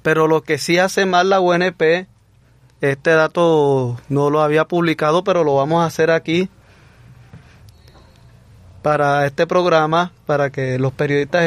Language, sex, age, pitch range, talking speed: Spanish, male, 30-49, 130-180 Hz, 140 wpm